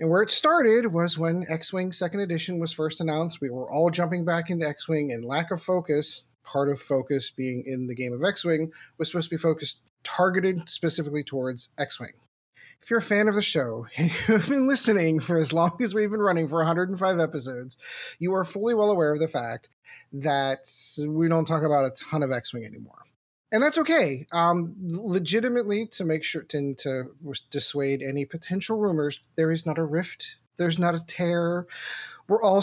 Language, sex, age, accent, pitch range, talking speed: English, male, 30-49, American, 145-190 Hz, 195 wpm